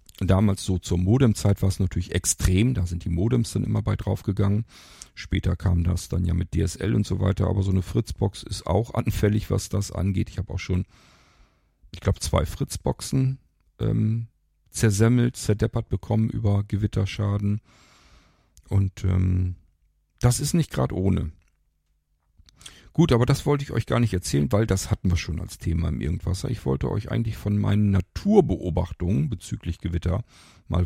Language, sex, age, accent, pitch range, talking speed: German, male, 50-69, German, 90-110 Hz, 165 wpm